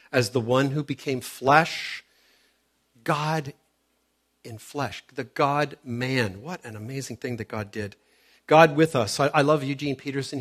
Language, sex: English, male